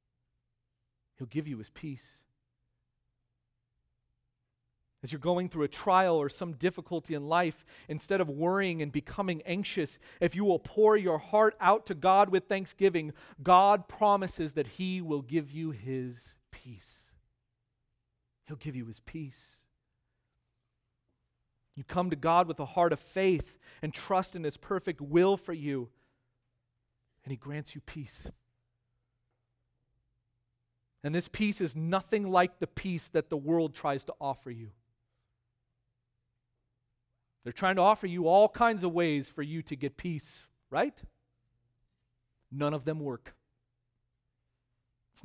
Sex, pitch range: male, 120-175 Hz